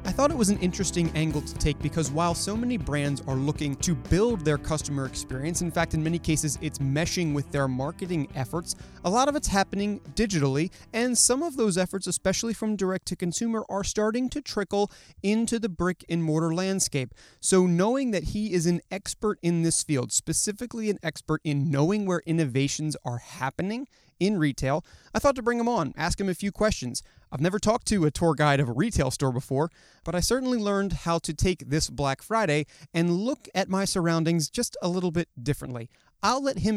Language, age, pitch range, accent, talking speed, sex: English, 30-49, 145-200 Hz, American, 205 wpm, male